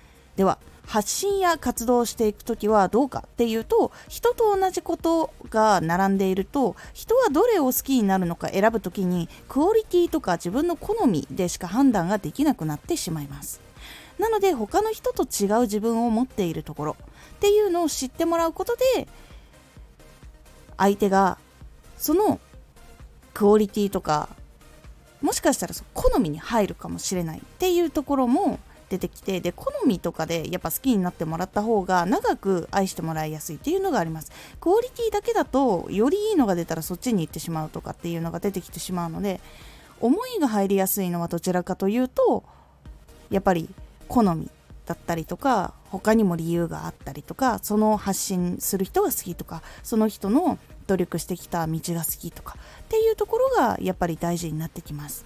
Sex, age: female, 20-39